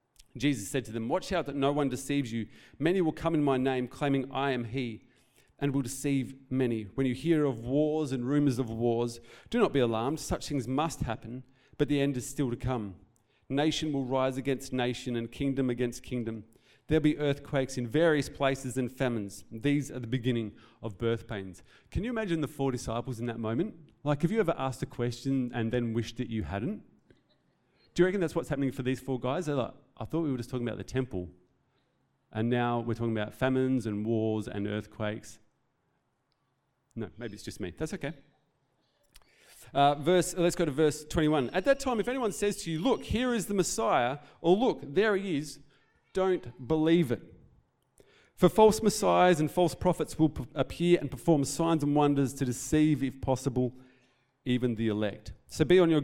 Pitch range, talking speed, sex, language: 120-150 Hz, 200 wpm, male, English